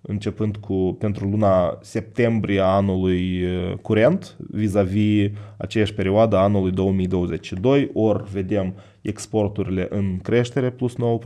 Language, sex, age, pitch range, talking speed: Romanian, male, 20-39, 100-115 Hz, 100 wpm